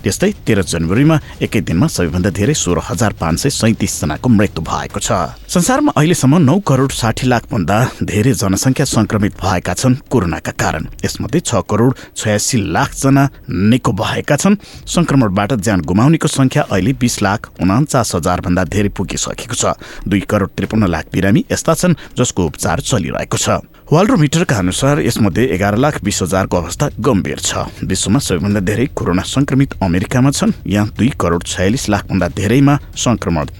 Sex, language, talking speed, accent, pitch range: male, English, 125 wpm, Indian, 95-130 Hz